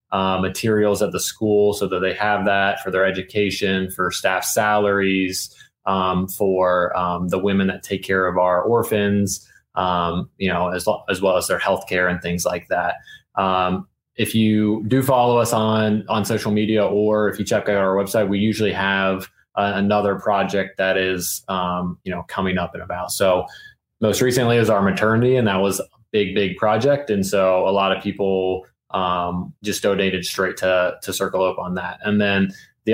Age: 20-39